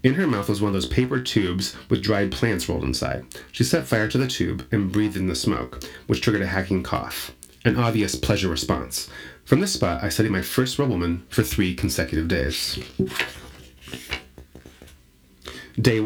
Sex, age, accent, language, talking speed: male, 30-49, American, English, 175 wpm